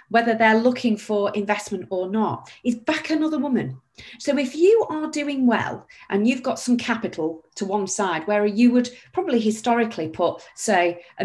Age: 40-59